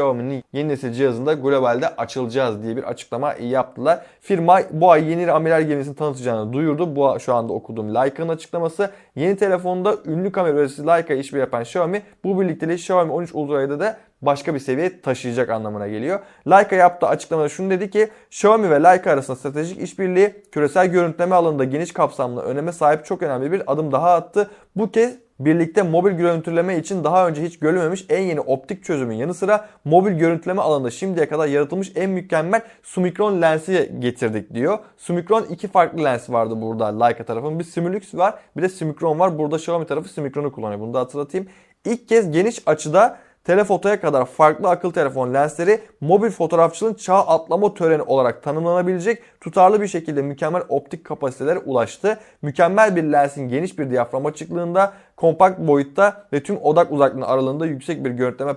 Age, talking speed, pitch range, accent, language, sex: 30-49, 165 wpm, 135-180 Hz, native, Turkish, male